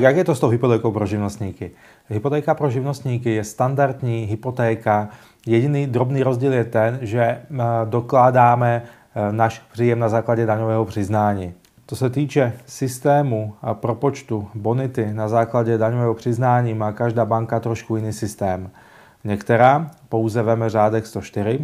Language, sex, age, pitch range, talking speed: Czech, male, 30-49, 110-125 Hz, 135 wpm